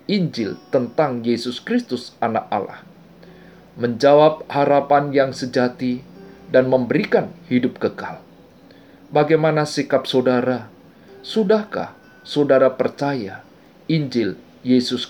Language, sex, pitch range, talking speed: Indonesian, male, 110-145 Hz, 85 wpm